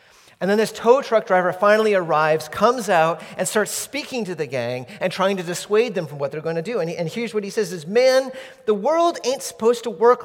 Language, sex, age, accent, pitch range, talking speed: English, male, 40-59, American, 145-210 Hz, 240 wpm